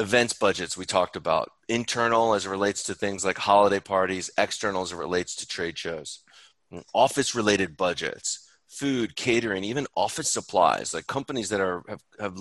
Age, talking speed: 30-49, 170 wpm